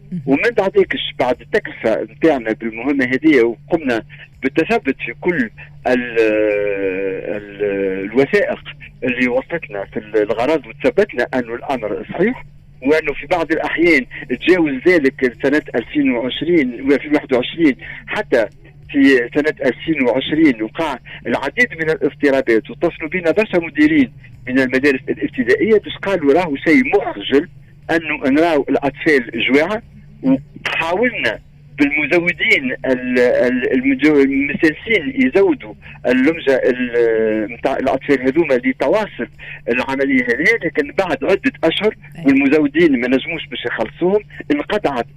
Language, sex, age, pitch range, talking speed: Arabic, male, 50-69, 130-195 Hz, 100 wpm